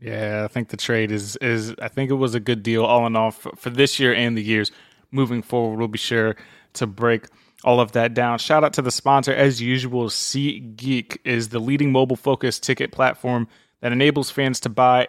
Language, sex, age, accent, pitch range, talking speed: English, male, 20-39, American, 110-125 Hz, 215 wpm